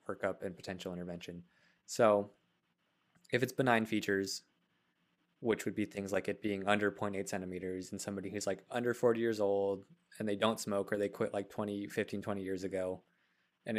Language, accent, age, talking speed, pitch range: English, American, 20-39, 180 wpm, 95-110 Hz